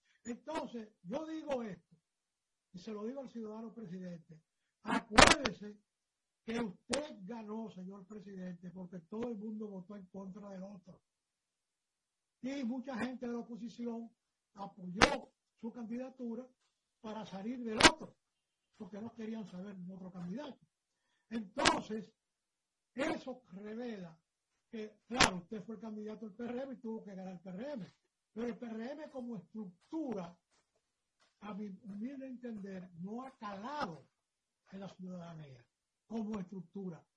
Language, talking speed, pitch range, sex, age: Spanish, 130 wpm, 190-240 Hz, male, 60-79